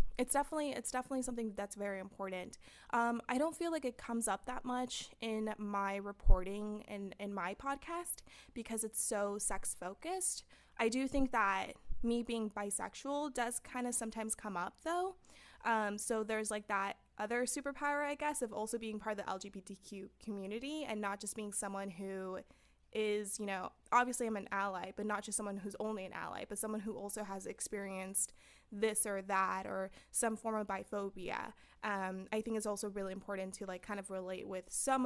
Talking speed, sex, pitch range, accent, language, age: 185 wpm, female, 200-245 Hz, American, English, 20-39